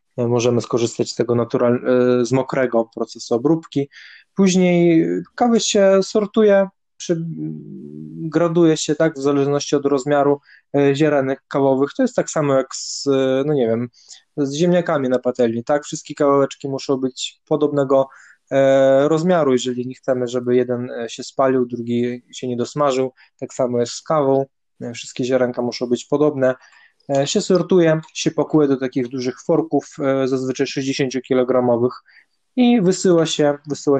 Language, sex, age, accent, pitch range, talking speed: Polish, male, 20-39, native, 125-145 Hz, 140 wpm